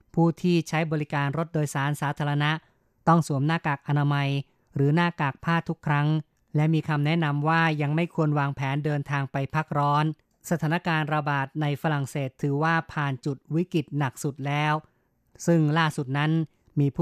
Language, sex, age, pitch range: Thai, female, 20-39, 140-160 Hz